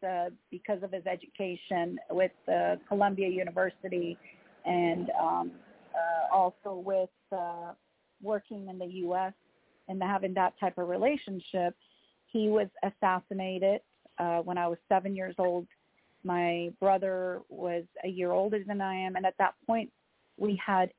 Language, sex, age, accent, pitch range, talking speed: English, female, 40-59, American, 180-205 Hz, 145 wpm